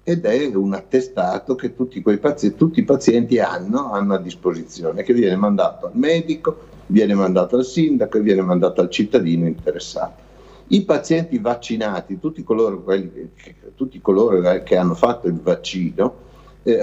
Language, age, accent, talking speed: Italian, 60-79, native, 150 wpm